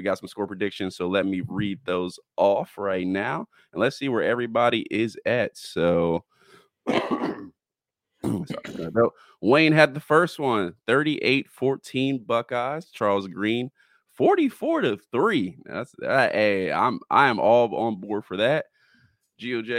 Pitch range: 100-135 Hz